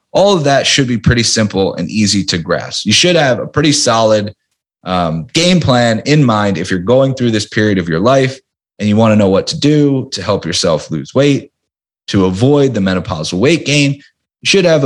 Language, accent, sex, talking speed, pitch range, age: English, American, male, 215 wpm, 95-135 Hz, 30-49